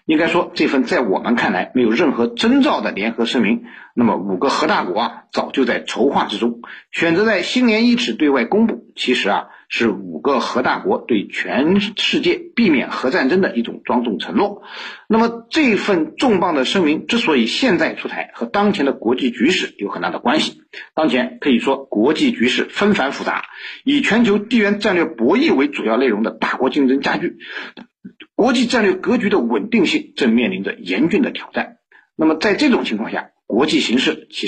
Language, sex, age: Chinese, male, 50-69